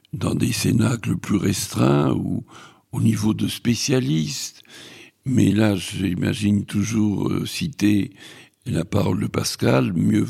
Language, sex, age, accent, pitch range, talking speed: French, male, 60-79, French, 105-125 Hz, 115 wpm